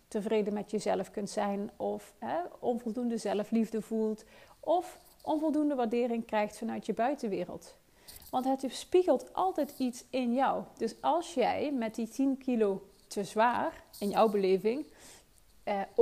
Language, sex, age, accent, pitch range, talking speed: Dutch, female, 40-59, Dutch, 210-260 Hz, 140 wpm